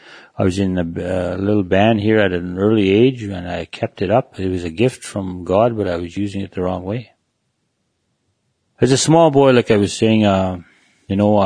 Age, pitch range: 40-59, 95-115 Hz